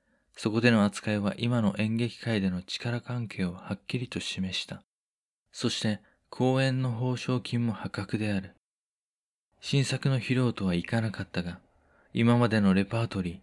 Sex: male